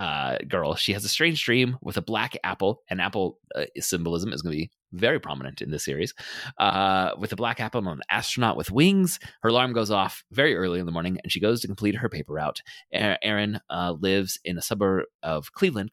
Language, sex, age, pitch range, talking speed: English, male, 30-49, 85-115 Hz, 220 wpm